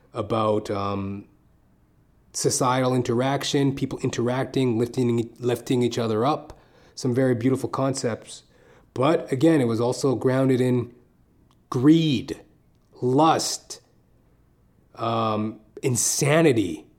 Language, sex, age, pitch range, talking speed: English, male, 30-49, 105-135 Hz, 90 wpm